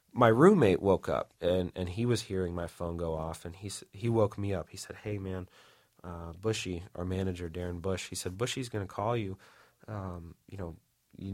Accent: American